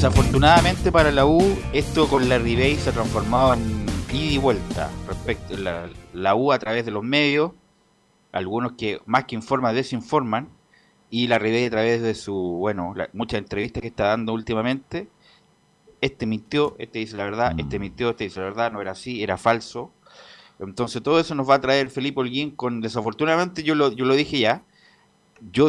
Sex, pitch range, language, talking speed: male, 100-135 Hz, Spanish, 185 wpm